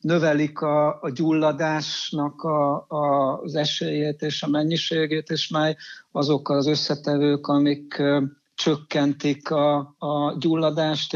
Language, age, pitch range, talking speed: Hungarian, 60-79, 145-155 Hz, 100 wpm